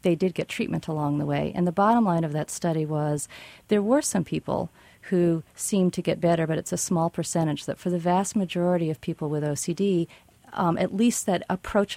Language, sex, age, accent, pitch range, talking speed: English, female, 40-59, American, 170-210 Hz, 215 wpm